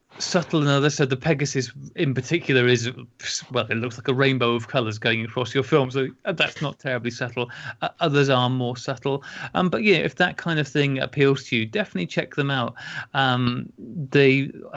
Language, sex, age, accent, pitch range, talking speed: English, male, 30-49, British, 125-155 Hz, 200 wpm